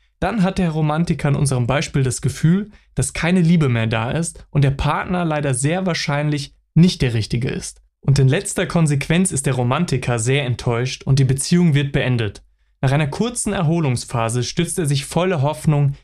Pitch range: 130-160 Hz